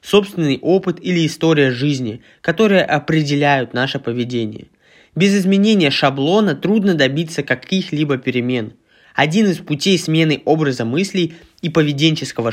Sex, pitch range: male, 135-185 Hz